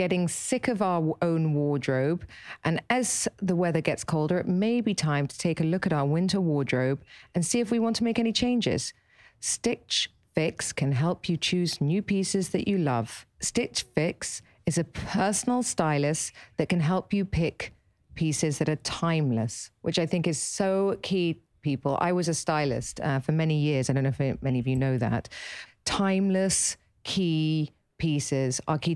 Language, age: English, 40-59